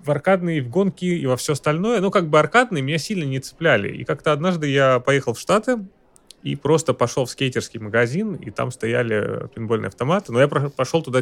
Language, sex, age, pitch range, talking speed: Russian, male, 20-39, 110-145 Hz, 205 wpm